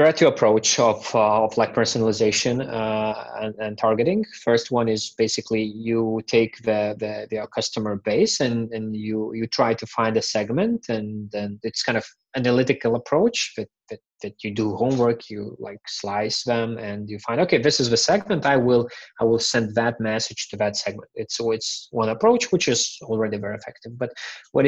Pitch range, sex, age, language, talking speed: 110-130 Hz, male, 20-39, English, 195 wpm